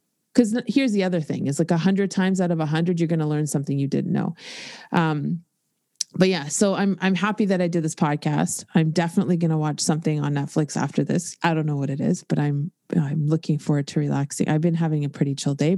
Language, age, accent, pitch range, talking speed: English, 30-49, American, 160-200 Hz, 235 wpm